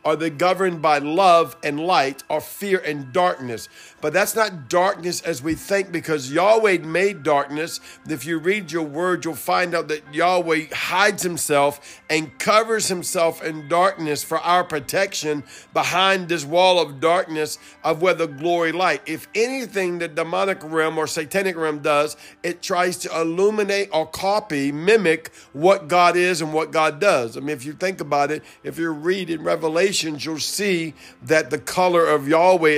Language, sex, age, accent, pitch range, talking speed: English, male, 50-69, American, 150-180 Hz, 170 wpm